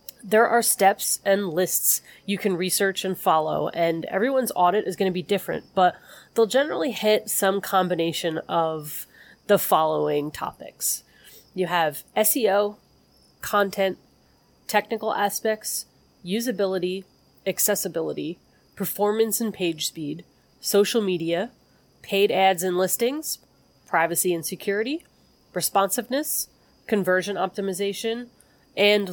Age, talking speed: 30-49, 110 wpm